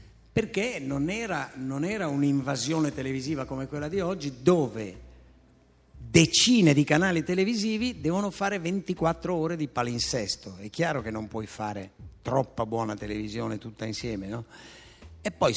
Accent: native